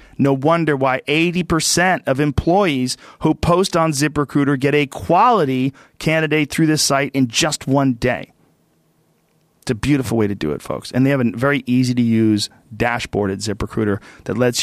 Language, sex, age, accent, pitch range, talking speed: English, male, 40-59, American, 110-145 Hz, 165 wpm